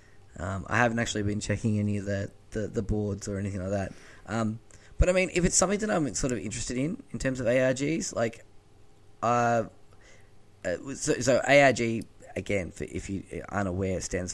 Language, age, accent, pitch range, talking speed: English, 10-29, Australian, 95-115 Hz, 190 wpm